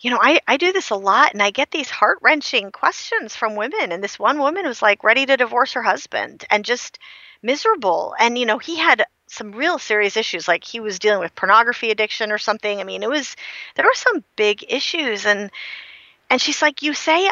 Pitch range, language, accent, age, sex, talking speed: 195-285 Hz, English, American, 40-59, female, 220 wpm